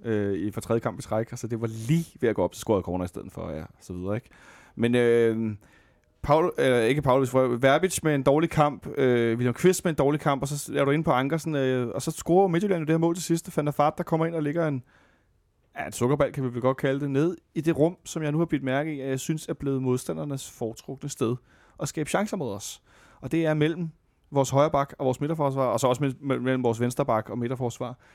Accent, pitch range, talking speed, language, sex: native, 125-160 Hz, 260 wpm, Danish, male